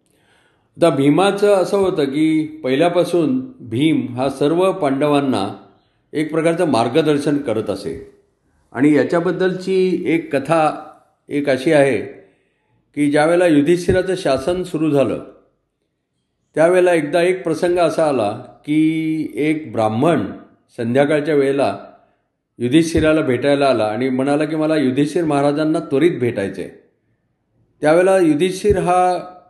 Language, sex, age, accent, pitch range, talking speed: Marathi, male, 50-69, native, 135-165 Hz, 110 wpm